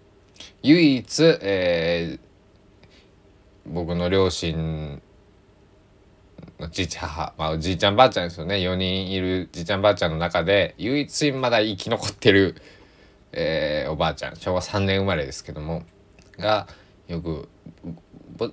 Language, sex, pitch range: Japanese, male, 85-100 Hz